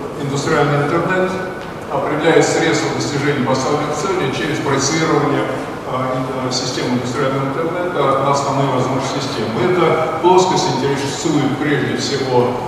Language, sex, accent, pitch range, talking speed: Russian, male, native, 125-155 Hz, 110 wpm